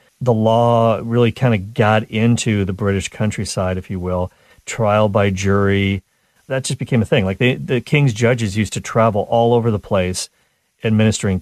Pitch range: 100-120 Hz